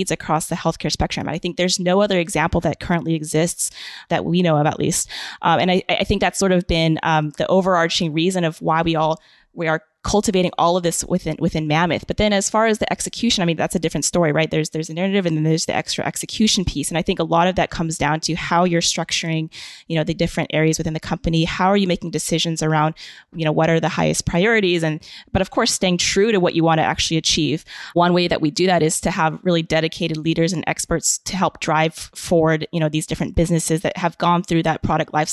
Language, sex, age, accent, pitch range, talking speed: English, female, 20-39, American, 155-175 Hz, 250 wpm